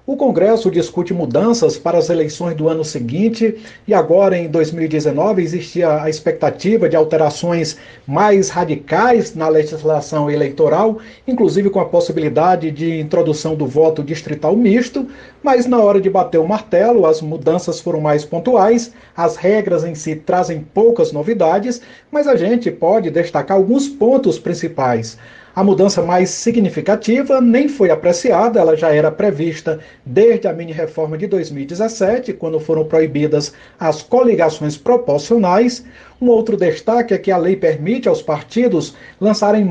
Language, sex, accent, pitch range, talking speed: Portuguese, male, Brazilian, 160-225 Hz, 140 wpm